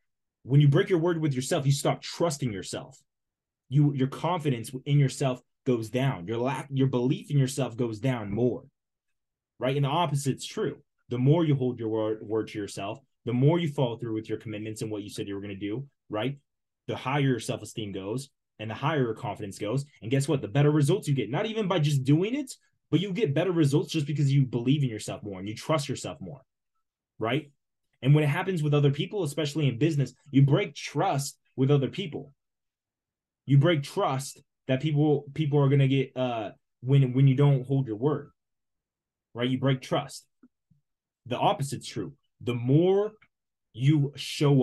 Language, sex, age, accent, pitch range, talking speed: English, male, 20-39, American, 125-150 Hz, 195 wpm